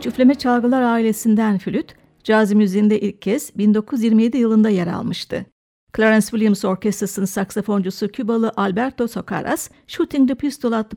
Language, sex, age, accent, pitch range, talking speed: Turkish, female, 60-79, native, 205-245 Hz, 125 wpm